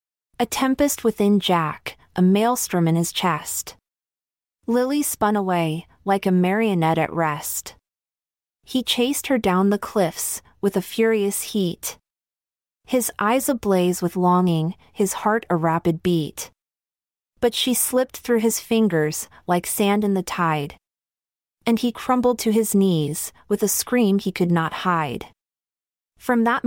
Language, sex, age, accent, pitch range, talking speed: English, female, 30-49, American, 175-230 Hz, 140 wpm